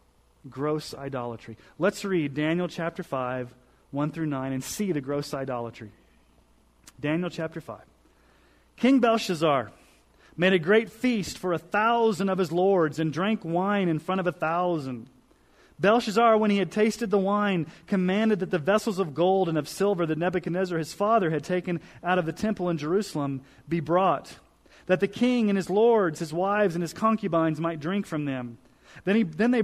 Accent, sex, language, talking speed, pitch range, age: American, male, English, 175 wpm, 145-200 Hz, 30-49